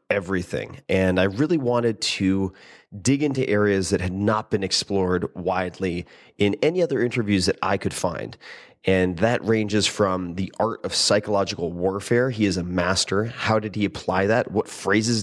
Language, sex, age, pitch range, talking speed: English, male, 30-49, 95-120 Hz, 170 wpm